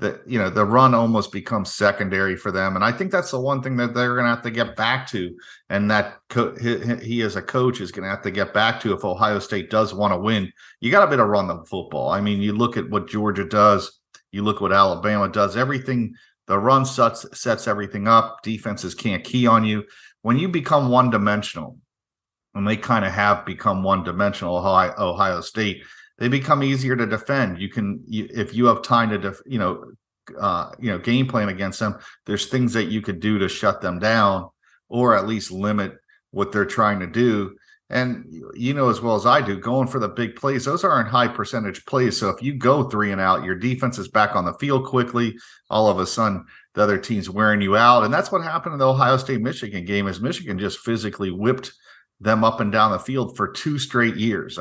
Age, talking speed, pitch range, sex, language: 50-69, 230 wpm, 100-125 Hz, male, English